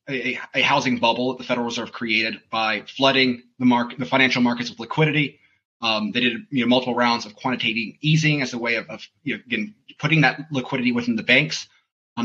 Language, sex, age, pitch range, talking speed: English, male, 30-49, 120-140 Hz, 210 wpm